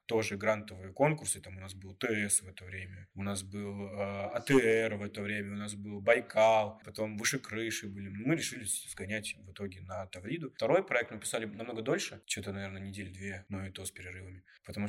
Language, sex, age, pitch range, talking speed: Russian, male, 20-39, 95-110 Hz, 200 wpm